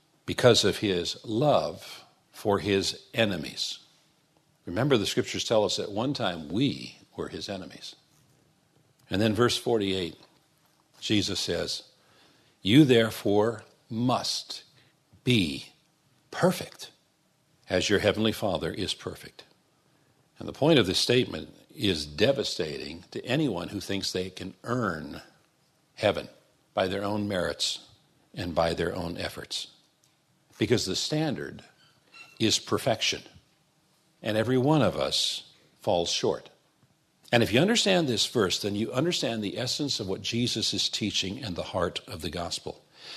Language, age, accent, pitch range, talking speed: English, 60-79, American, 100-145 Hz, 130 wpm